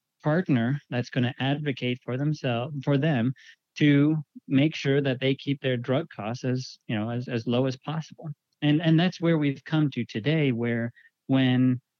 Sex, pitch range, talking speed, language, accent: male, 125-150 Hz, 180 wpm, English, American